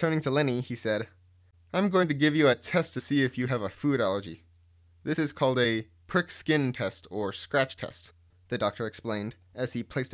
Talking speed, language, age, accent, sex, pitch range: 215 wpm, English, 20-39, American, male, 90-135 Hz